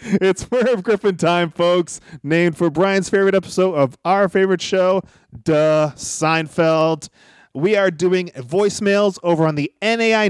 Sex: male